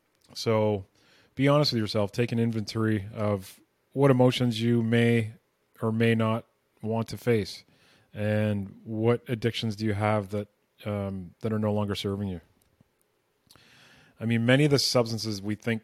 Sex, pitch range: male, 105-120 Hz